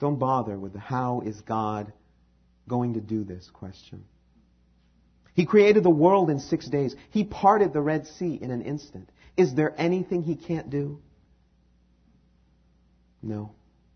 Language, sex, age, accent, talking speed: English, male, 40-59, American, 145 wpm